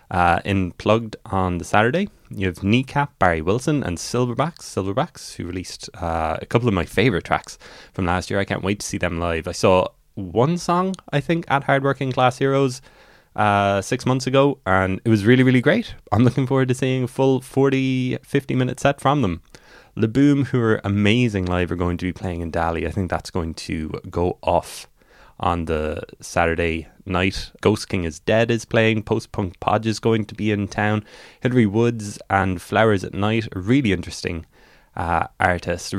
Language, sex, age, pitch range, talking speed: English, male, 20-39, 90-125 Hz, 190 wpm